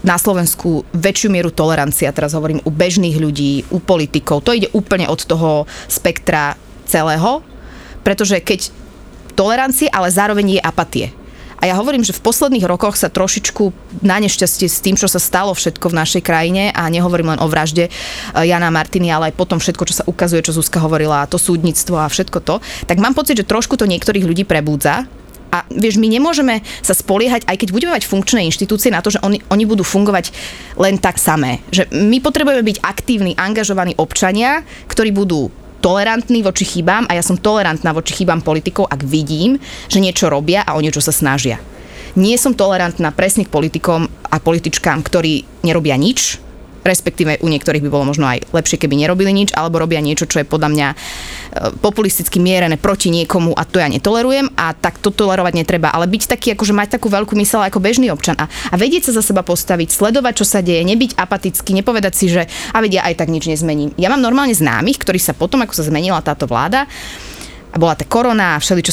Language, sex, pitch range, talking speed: Slovak, female, 160-210 Hz, 190 wpm